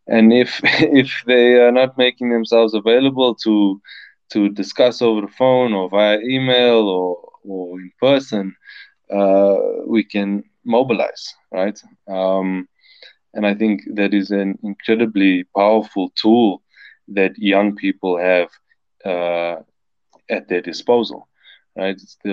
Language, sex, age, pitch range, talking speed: English, male, 20-39, 95-120 Hz, 130 wpm